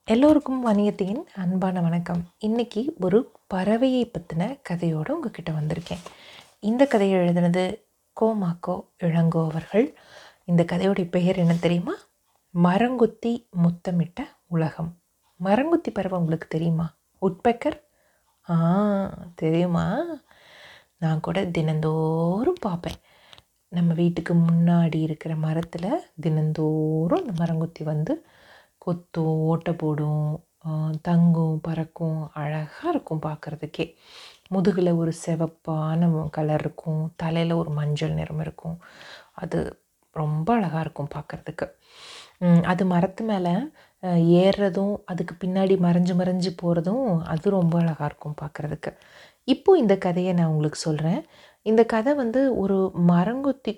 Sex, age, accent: female, 30-49, native